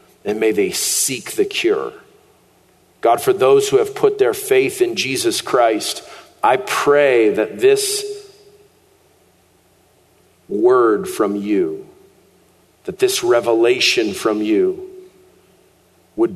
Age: 40-59